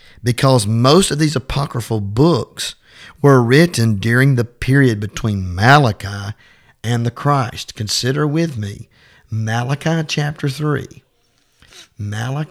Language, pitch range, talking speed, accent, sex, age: English, 110-145 Hz, 110 wpm, American, male, 50-69